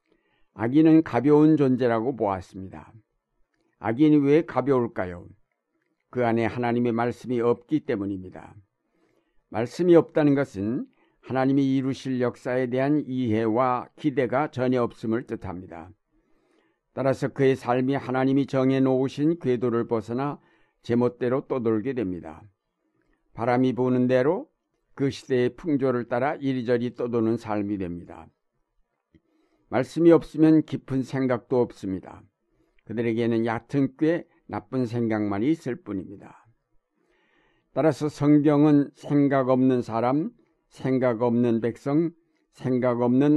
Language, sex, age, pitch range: Korean, male, 60-79, 115-140 Hz